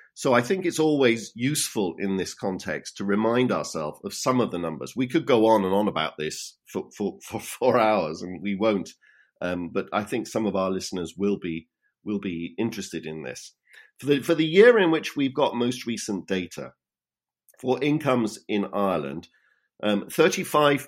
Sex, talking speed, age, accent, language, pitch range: male, 190 wpm, 50-69, British, English, 90-110 Hz